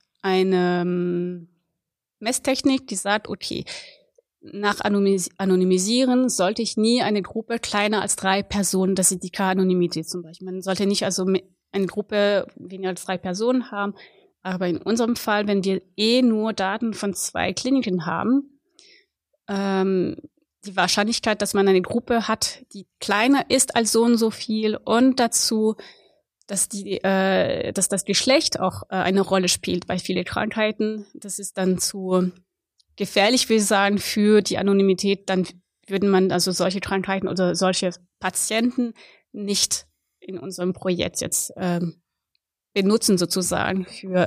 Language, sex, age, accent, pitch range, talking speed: German, female, 30-49, German, 185-220 Hz, 145 wpm